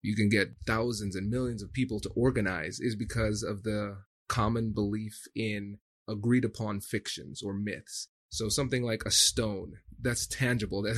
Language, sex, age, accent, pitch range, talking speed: English, male, 30-49, American, 105-125 Hz, 160 wpm